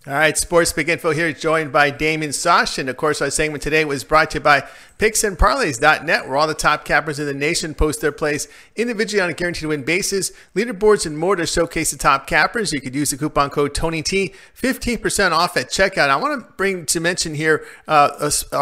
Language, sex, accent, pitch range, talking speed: English, male, American, 145-170 Hz, 215 wpm